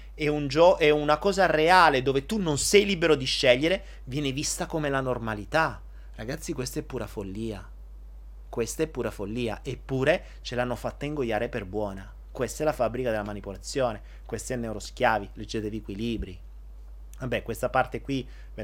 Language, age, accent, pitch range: Italian, 30-49, native, 90-125 Hz